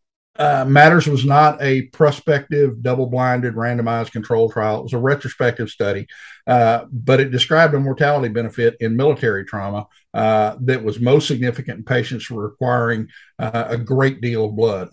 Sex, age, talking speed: male, 50-69, 155 wpm